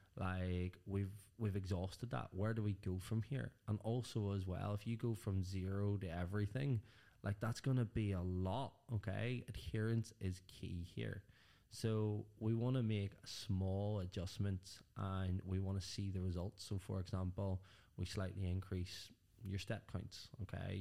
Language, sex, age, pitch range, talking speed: English, male, 20-39, 95-110 Hz, 165 wpm